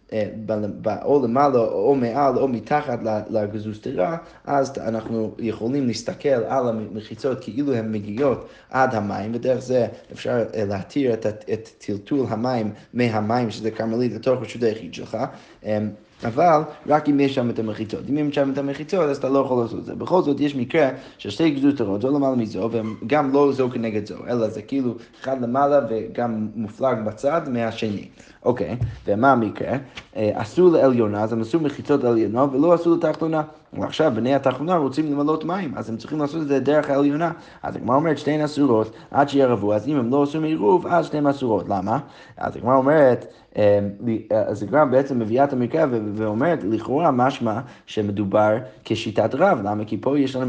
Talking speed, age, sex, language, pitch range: 175 wpm, 20-39, male, Hebrew, 110-145 Hz